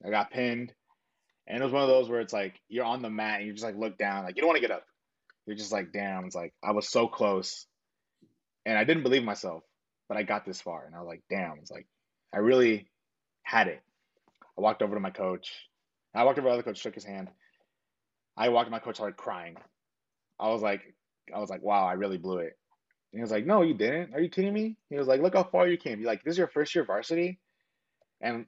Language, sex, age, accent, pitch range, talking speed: English, male, 20-39, American, 105-145 Hz, 260 wpm